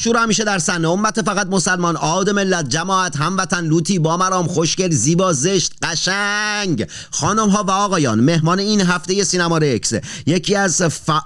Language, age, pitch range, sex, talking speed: Persian, 40-59, 130-185 Hz, male, 160 wpm